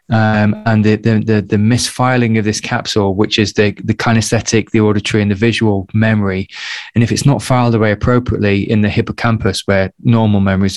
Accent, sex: British, male